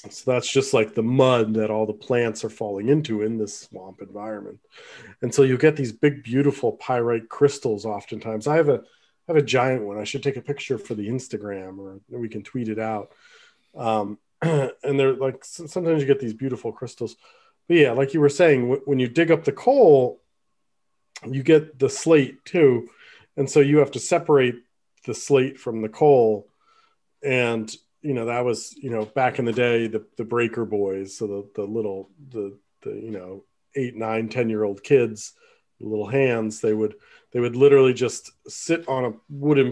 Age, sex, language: 40-59, male, English